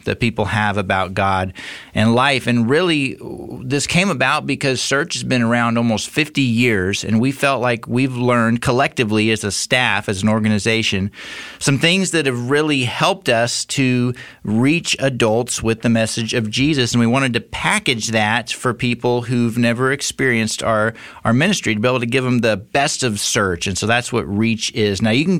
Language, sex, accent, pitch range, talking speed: English, male, American, 115-140 Hz, 190 wpm